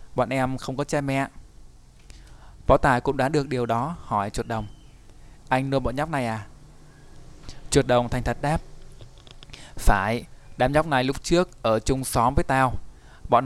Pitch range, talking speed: 120-140 Hz, 175 wpm